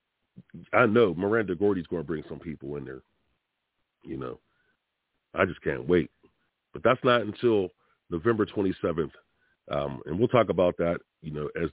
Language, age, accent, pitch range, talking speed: English, 40-59, American, 100-135 Hz, 165 wpm